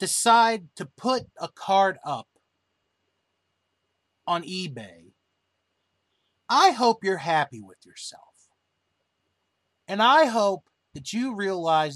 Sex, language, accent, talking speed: male, English, American, 100 wpm